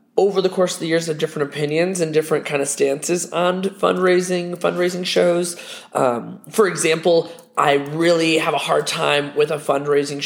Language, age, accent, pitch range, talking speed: English, 20-39, American, 145-190 Hz, 175 wpm